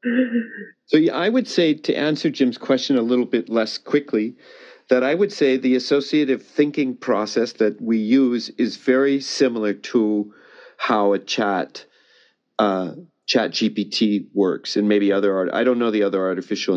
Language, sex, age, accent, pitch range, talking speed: English, male, 50-69, American, 105-145 Hz, 160 wpm